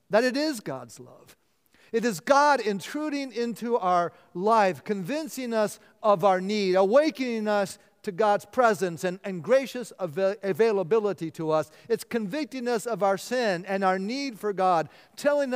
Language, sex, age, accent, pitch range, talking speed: English, male, 50-69, American, 150-220 Hz, 155 wpm